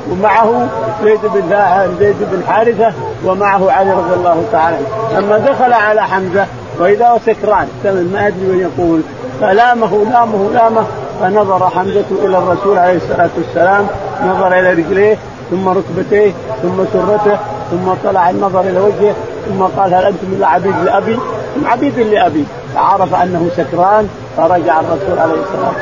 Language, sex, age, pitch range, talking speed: Arabic, male, 50-69, 175-210 Hz, 135 wpm